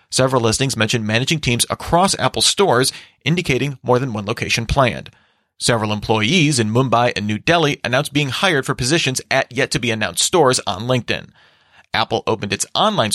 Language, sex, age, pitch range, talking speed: English, male, 30-49, 115-145 Hz, 160 wpm